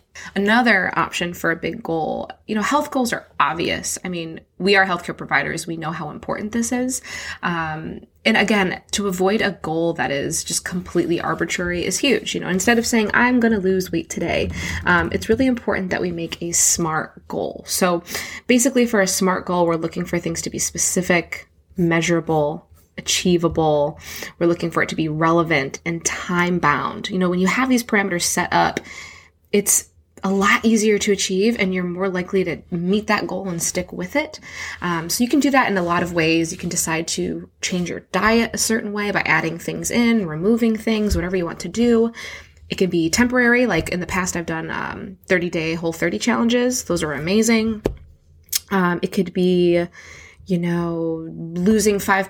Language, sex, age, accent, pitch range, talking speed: English, female, 20-39, American, 170-215 Hz, 195 wpm